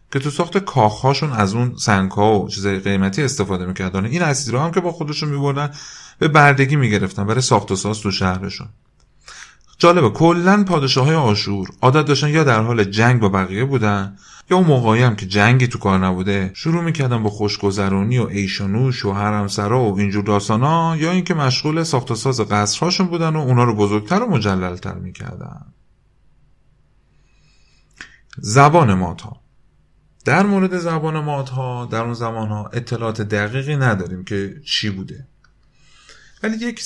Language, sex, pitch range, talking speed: Persian, male, 100-145 Hz, 160 wpm